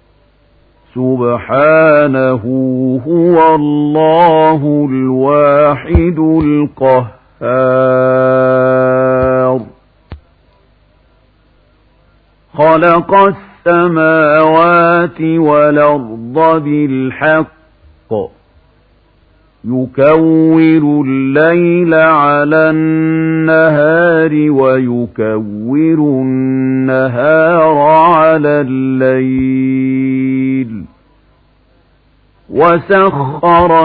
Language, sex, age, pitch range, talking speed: Arabic, male, 50-69, 130-160 Hz, 30 wpm